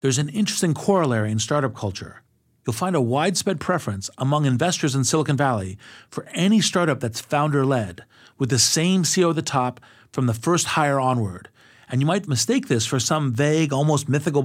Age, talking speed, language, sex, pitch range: 40-59, 185 wpm, English, male, 125-160 Hz